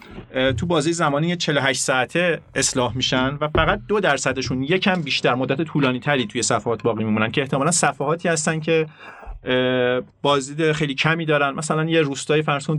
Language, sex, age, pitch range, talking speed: Persian, male, 40-59, 130-175 Hz, 155 wpm